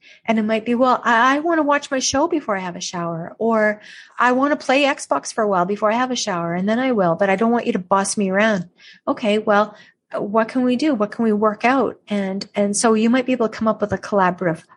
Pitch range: 190-230 Hz